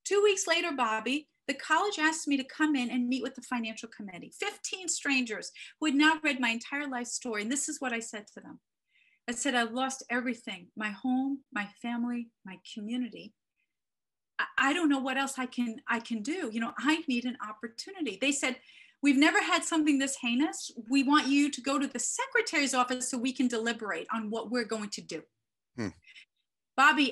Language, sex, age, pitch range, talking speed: English, female, 40-59, 220-280 Hz, 195 wpm